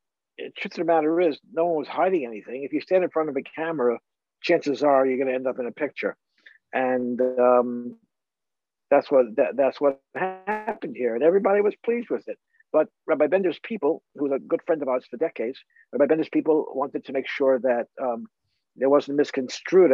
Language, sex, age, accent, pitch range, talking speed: English, male, 60-79, American, 125-175 Hz, 210 wpm